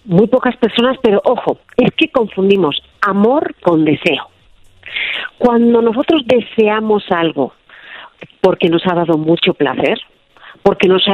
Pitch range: 180-265 Hz